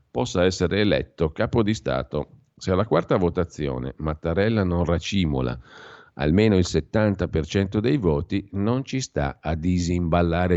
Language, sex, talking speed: Italian, male, 130 wpm